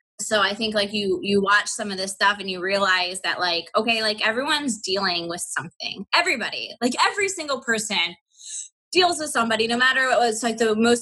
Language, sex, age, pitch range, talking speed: English, female, 20-39, 205-250 Hz, 200 wpm